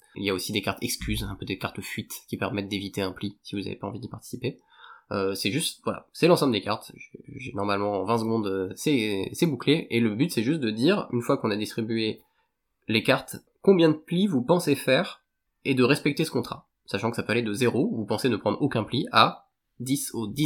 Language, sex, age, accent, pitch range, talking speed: French, male, 20-39, French, 100-125 Hz, 240 wpm